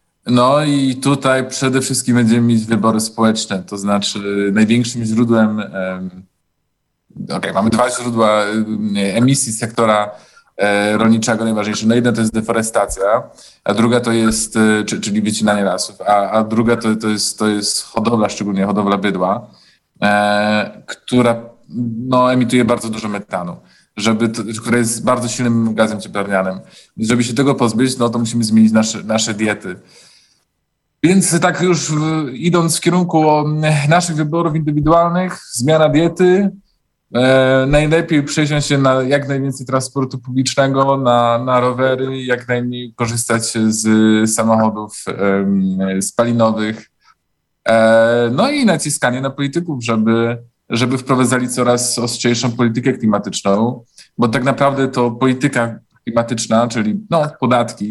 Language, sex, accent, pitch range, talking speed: Polish, male, native, 110-130 Hz, 125 wpm